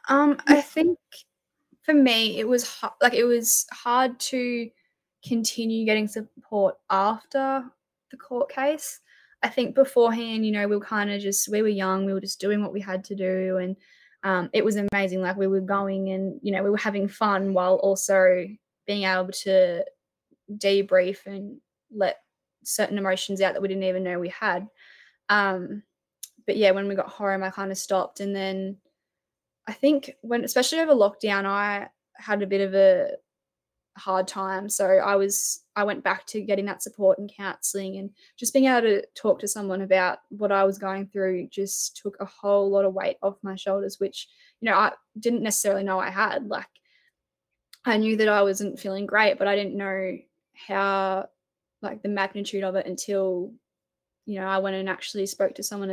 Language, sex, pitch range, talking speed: English, female, 195-225 Hz, 190 wpm